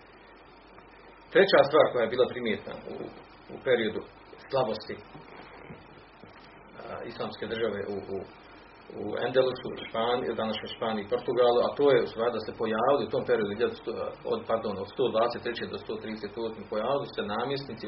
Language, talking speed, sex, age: Croatian, 150 wpm, male, 40-59